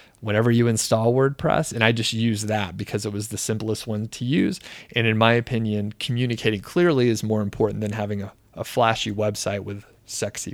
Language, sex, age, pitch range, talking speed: English, male, 30-49, 105-120 Hz, 195 wpm